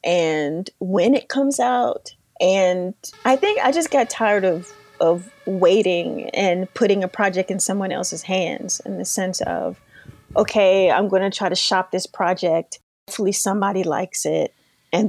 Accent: American